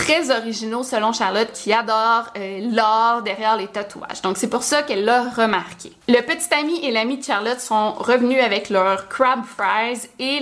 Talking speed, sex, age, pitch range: 180 wpm, female, 20-39, 200-245 Hz